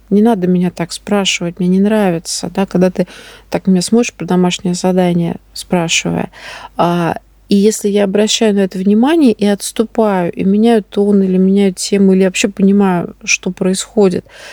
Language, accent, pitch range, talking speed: Russian, native, 190-220 Hz, 155 wpm